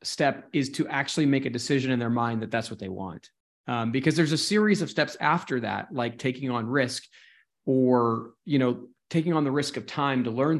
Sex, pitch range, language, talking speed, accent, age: male, 120-145 Hz, English, 220 wpm, American, 20-39